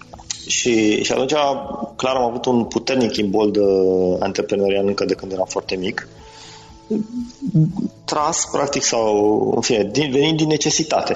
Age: 30-49